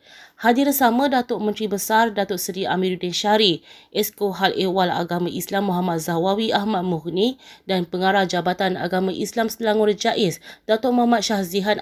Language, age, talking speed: Malay, 20-39, 135 wpm